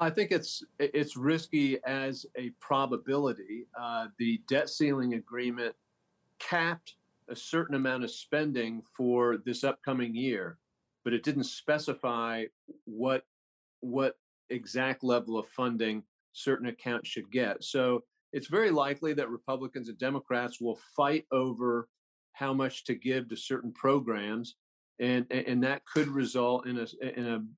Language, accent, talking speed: English, American, 140 wpm